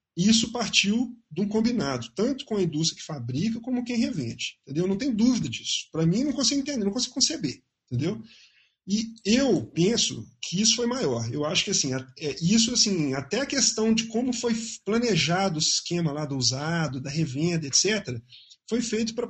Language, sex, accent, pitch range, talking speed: Portuguese, male, Brazilian, 165-220 Hz, 185 wpm